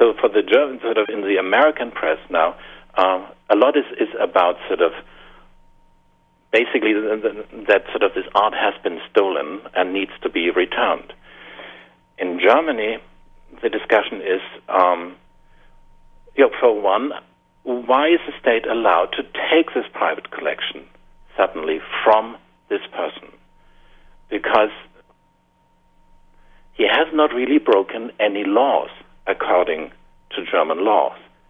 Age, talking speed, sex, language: 60-79, 135 wpm, male, English